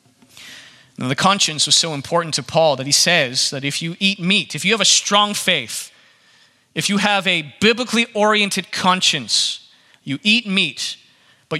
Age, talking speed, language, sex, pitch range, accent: 30-49, 165 wpm, English, male, 165-220 Hz, American